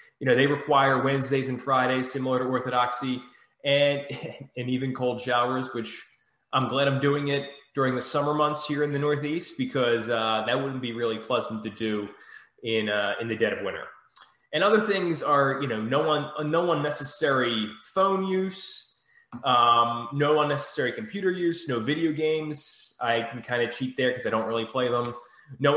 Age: 20-39